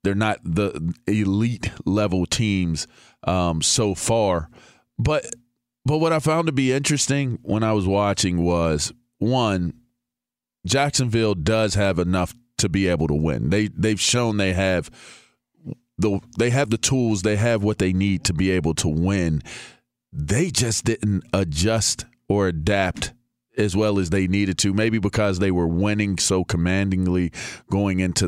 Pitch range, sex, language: 90-110 Hz, male, English